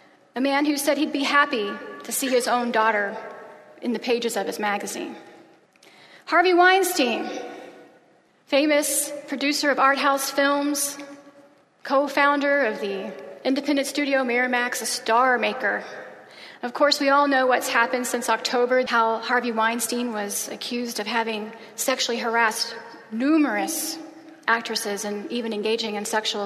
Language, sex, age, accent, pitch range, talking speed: English, female, 30-49, American, 230-290 Hz, 135 wpm